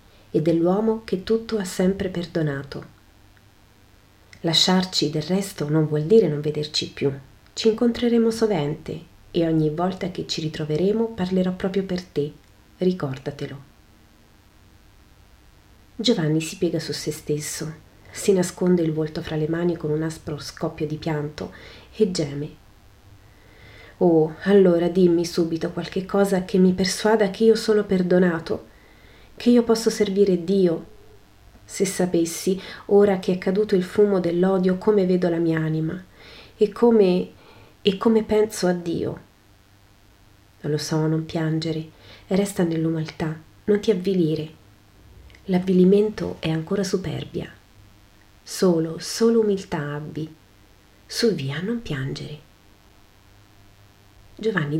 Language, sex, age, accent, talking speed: Italian, female, 30-49, native, 125 wpm